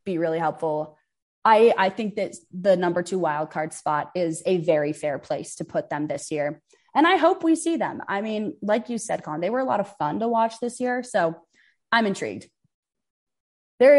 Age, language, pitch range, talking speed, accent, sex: 20-39, English, 175-260 Hz, 210 wpm, American, female